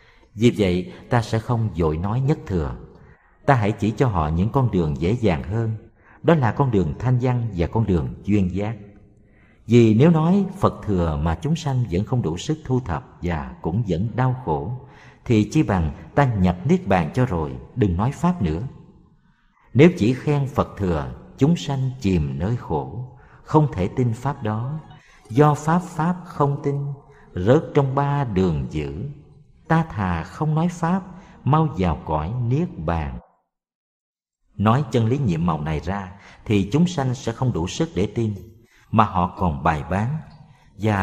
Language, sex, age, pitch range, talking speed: Vietnamese, male, 50-69, 95-145 Hz, 175 wpm